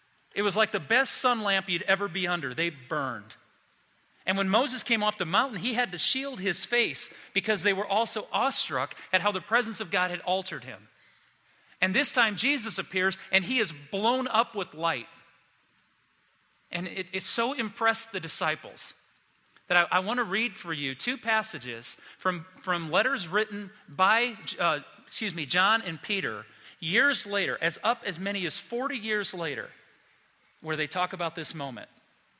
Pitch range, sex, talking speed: 150-210 Hz, male, 180 wpm